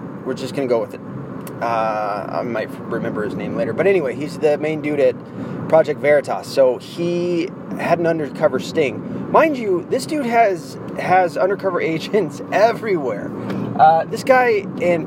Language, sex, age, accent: English, male, 30-49, American